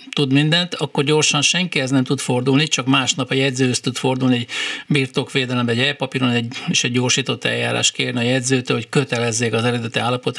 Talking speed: 175 wpm